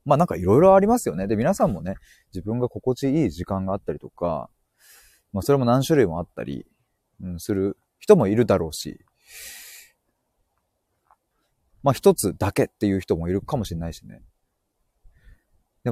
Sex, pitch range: male, 90-135 Hz